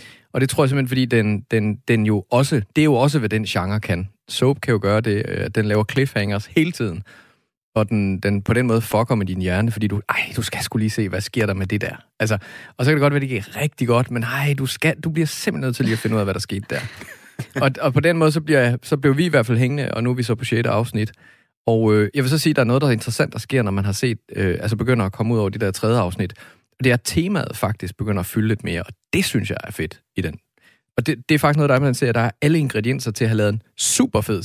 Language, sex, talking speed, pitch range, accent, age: Danish, male, 300 wpm, 105-130 Hz, native, 30-49